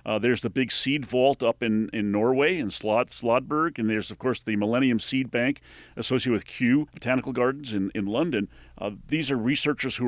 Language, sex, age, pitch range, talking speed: English, male, 40-59, 115-150 Hz, 195 wpm